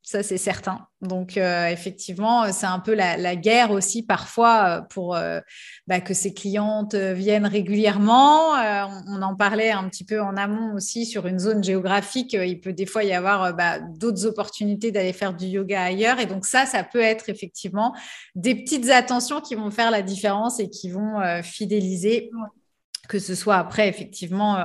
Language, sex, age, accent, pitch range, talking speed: French, female, 30-49, French, 195-230 Hz, 185 wpm